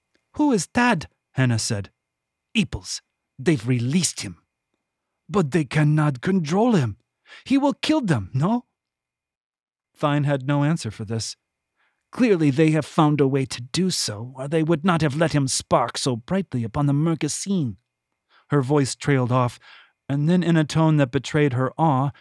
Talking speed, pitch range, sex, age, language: 165 wpm, 110-150 Hz, male, 40-59, English